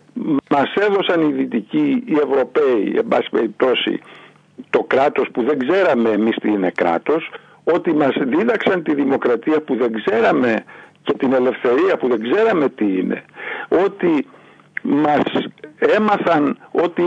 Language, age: Greek, 60-79